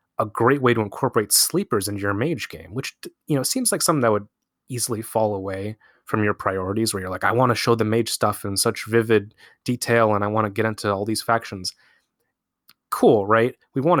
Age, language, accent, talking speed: 30-49, English, American, 220 wpm